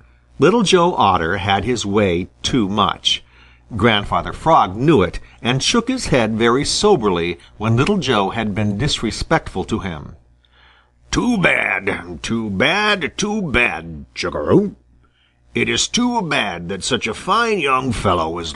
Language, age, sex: Japanese, 50-69, male